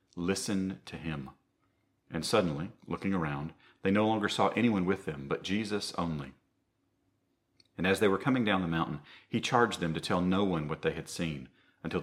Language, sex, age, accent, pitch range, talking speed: English, male, 40-59, American, 75-95 Hz, 185 wpm